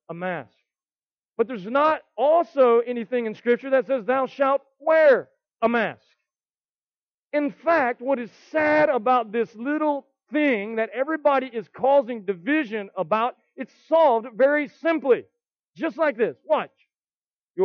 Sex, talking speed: male, 135 wpm